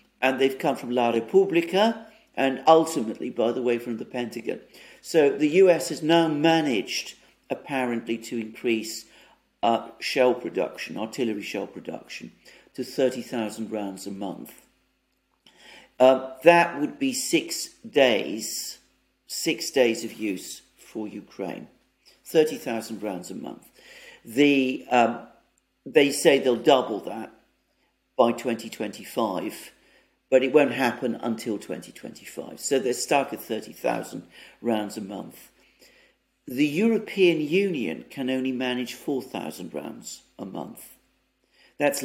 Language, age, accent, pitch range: English, 50-69, British, 115-150 Hz